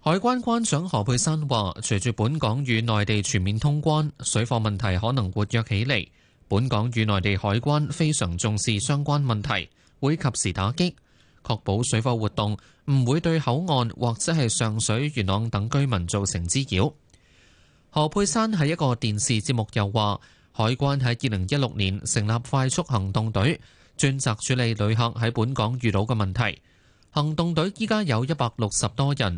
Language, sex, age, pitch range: Chinese, male, 20-39, 105-140 Hz